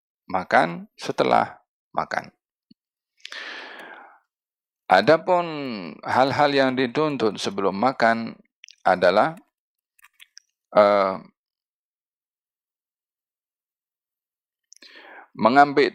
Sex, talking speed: male, 45 wpm